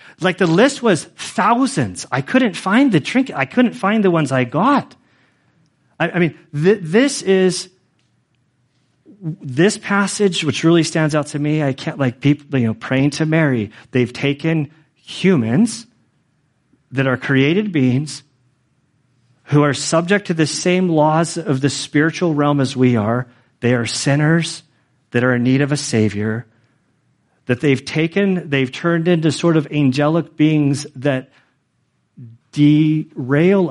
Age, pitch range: 40-59, 120-155 Hz